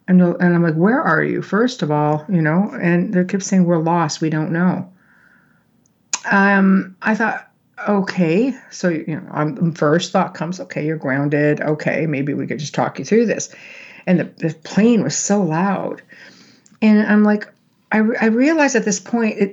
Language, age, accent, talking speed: English, 50-69, American, 185 wpm